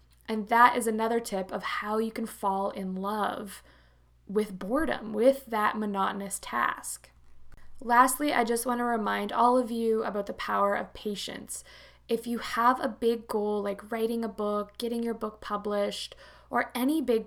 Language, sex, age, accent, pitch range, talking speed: English, female, 20-39, American, 200-240 Hz, 170 wpm